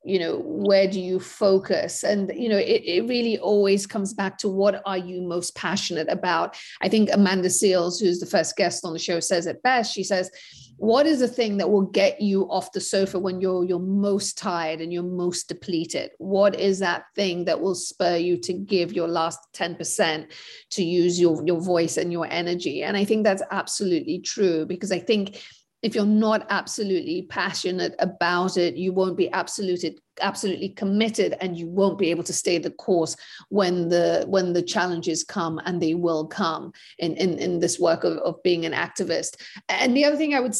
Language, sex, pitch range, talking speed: English, female, 175-210 Hz, 200 wpm